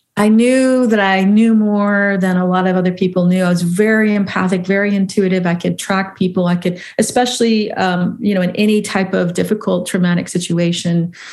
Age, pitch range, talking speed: 40-59, 175-210 Hz, 190 wpm